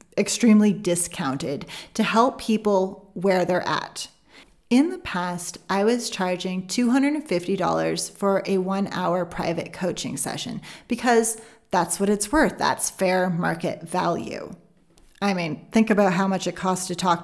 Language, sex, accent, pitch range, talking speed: English, female, American, 180-220 Hz, 145 wpm